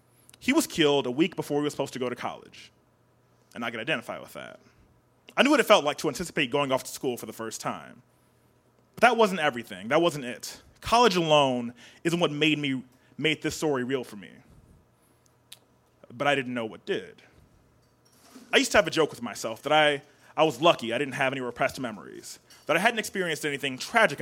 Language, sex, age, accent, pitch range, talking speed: English, male, 20-39, American, 130-165 Hz, 210 wpm